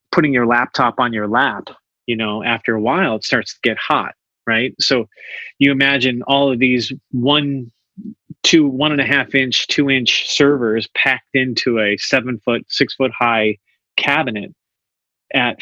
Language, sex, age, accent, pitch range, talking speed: English, male, 30-49, American, 115-135 Hz, 160 wpm